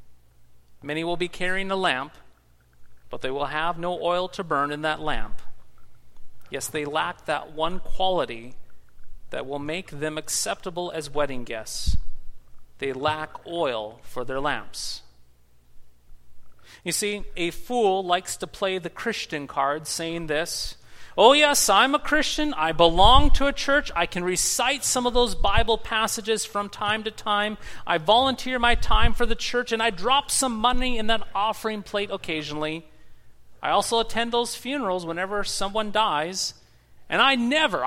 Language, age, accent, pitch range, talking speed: English, 40-59, American, 135-220 Hz, 155 wpm